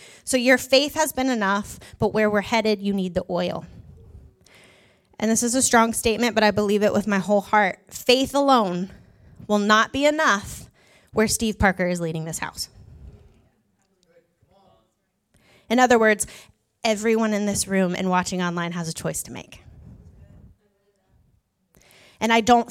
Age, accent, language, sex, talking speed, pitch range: 20-39, American, English, female, 155 wpm, 190-235 Hz